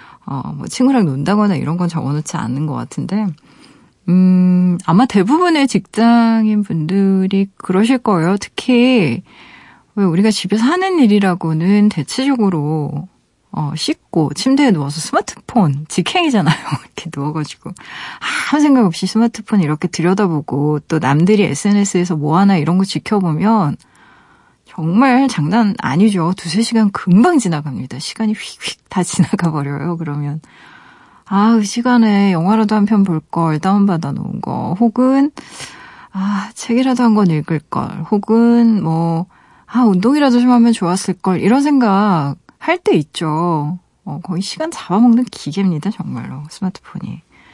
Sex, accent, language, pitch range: female, native, Korean, 165-230 Hz